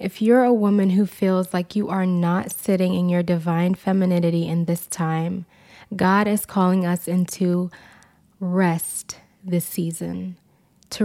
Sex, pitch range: female, 175-205 Hz